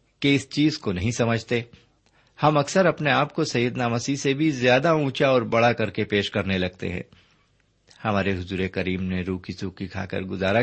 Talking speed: 200 wpm